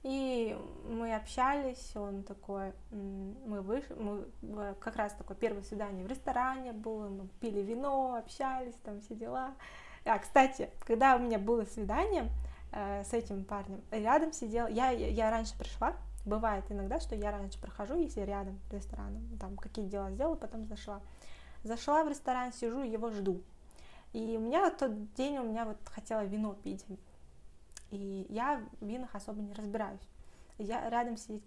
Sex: female